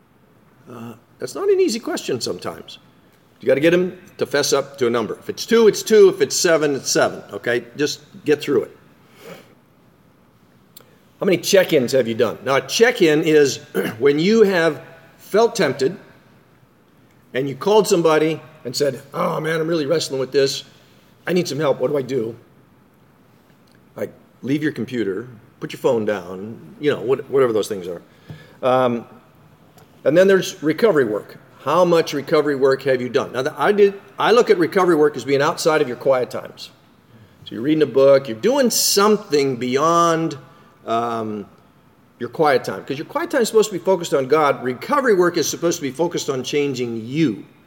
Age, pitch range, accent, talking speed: 50-69, 140-205 Hz, American, 185 wpm